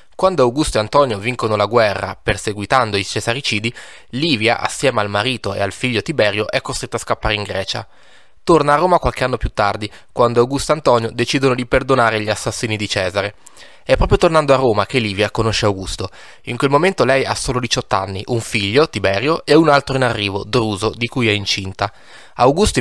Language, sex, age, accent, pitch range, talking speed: Italian, male, 20-39, native, 105-135 Hz, 190 wpm